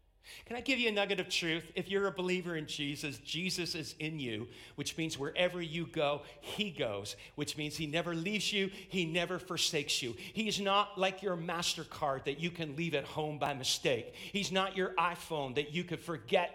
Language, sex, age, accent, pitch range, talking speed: English, male, 50-69, American, 135-195 Hz, 205 wpm